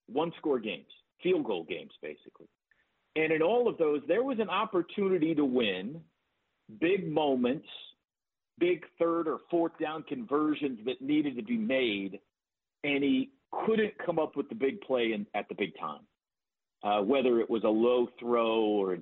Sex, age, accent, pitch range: male, 50-69, American, 115-165 Hz